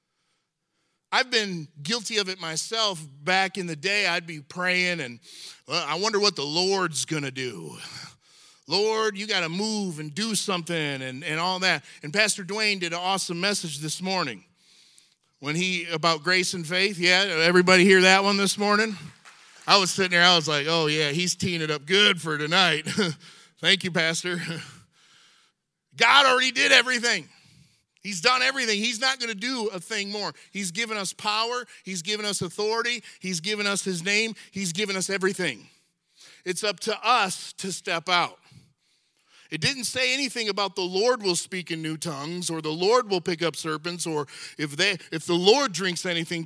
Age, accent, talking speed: 40-59, American, 180 wpm